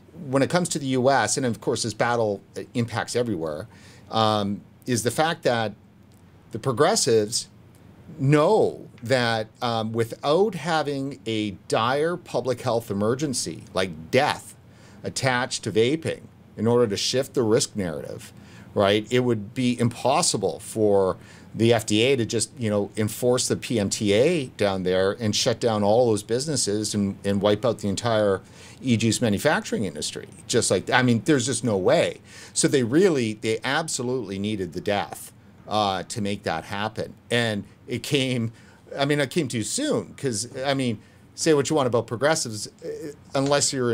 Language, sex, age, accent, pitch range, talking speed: English, male, 50-69, American, 100-125 Hz, 160 wpm